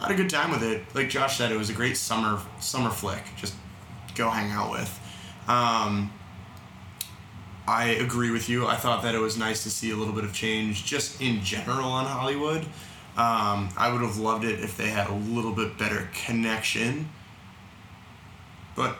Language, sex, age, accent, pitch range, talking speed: English, male, 20-39, American, 105-130 Hz, 190 wpm